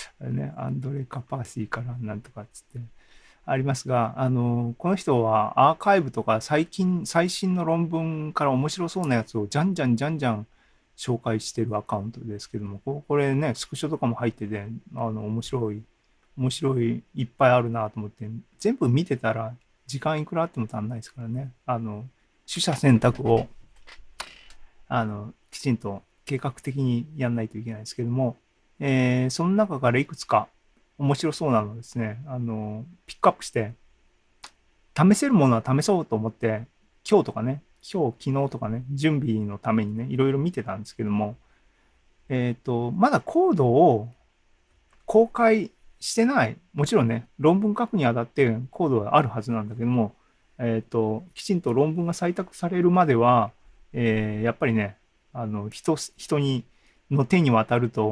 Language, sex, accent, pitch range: Japanese, male, native, 110-145 Hz